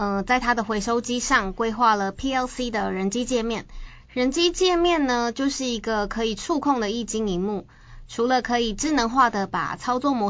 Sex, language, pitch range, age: female, Chinese, 205-255 Hz, 20-39